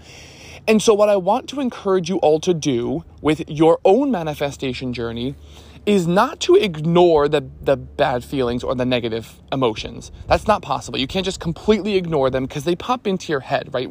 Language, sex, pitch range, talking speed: English, male, 125-185 Hz, 190 wpm